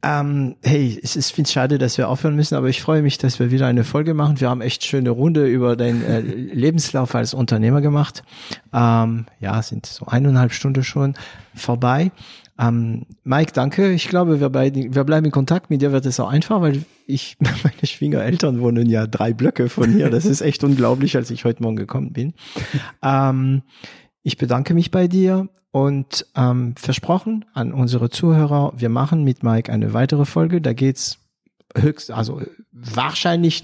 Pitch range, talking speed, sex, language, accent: 120-150 Hz, 180 wpm, male, German, German